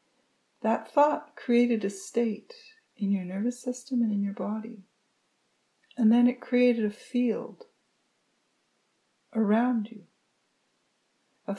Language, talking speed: English, 115 wpm